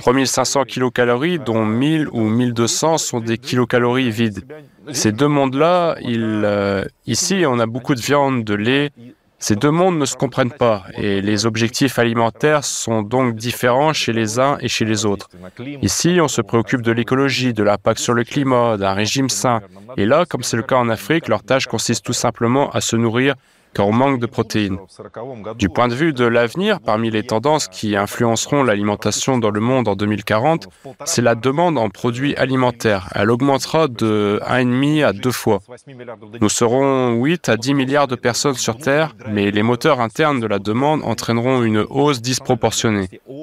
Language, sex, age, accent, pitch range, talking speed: French, male, 20-39, French, 110-140 Hz, 180 wpm